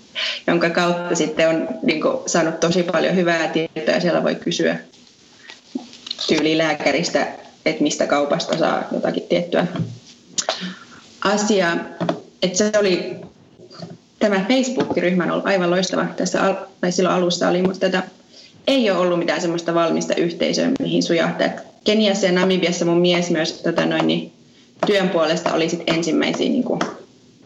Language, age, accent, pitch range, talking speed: Finnish, 20-39, native, 165-195 Hz, 135 wpm